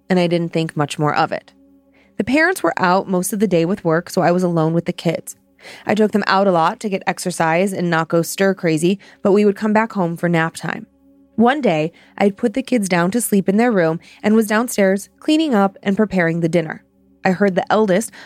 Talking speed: 240 wpm